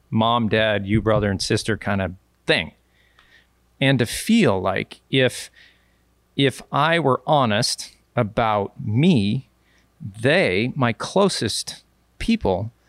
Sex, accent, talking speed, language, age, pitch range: male, American, 110 wpm, English, 40-59, 95-125 Hz